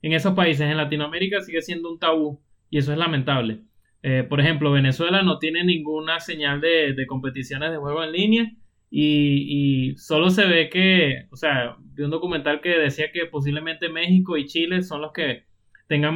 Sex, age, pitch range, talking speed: male, 20-39, 135-165 Hz, 185 wpm